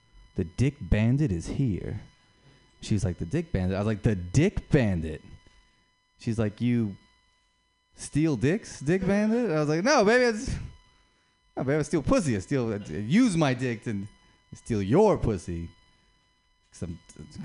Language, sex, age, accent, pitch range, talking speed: English, male, 20-39, American, 95-150 Hz, 140 wpm